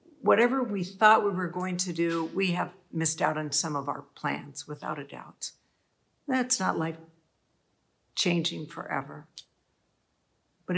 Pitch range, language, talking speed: 150-190 Hz, English, 145 wpm